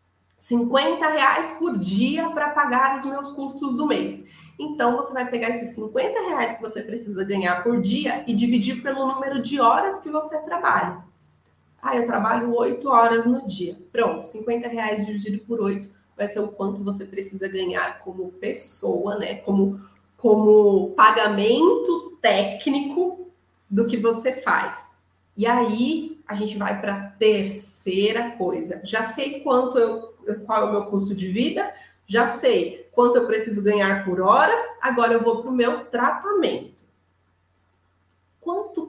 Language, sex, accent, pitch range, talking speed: Portuguese, female, Brazilian, 210-280 Hz, 155 wpm